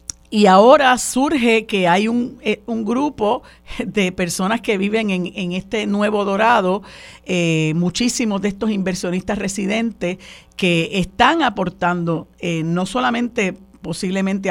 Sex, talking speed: female, 125 wpm